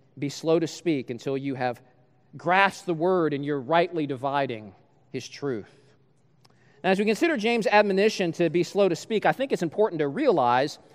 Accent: American